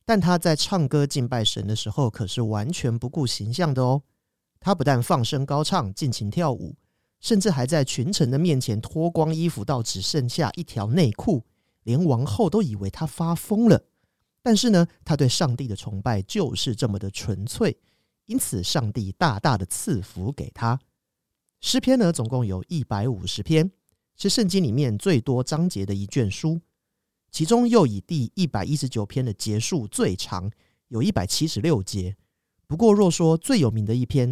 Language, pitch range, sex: Chinese, 110-165 Hz, male